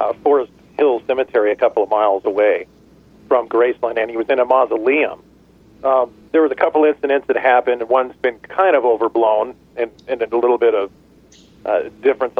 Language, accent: English, American